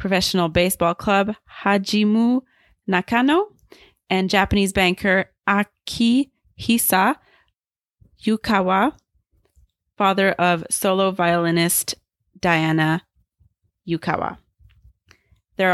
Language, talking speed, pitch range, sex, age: English, 65 wpm, 175-215 Hz, female, 20-39